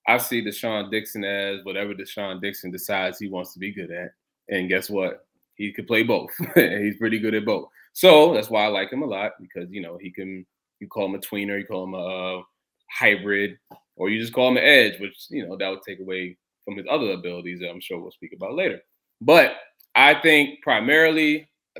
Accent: American